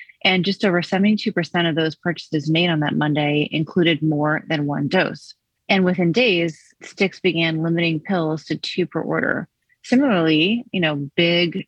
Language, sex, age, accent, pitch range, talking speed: English, female, 30-49, American, 155-185 Hz, 160 wpm